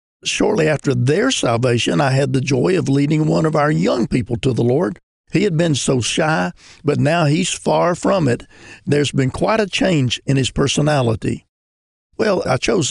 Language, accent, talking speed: English, American, 185 wpm